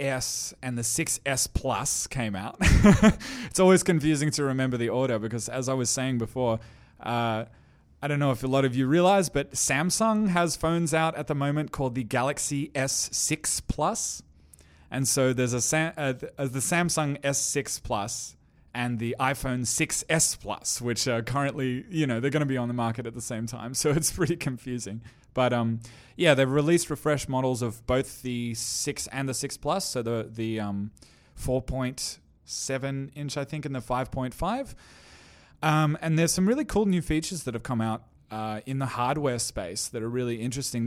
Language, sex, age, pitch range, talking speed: English, male, 20-39, 115-145 Hz, 185 wpm